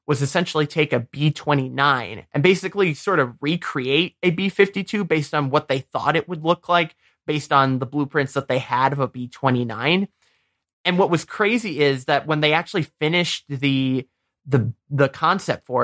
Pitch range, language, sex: 135-175 Hz, English, male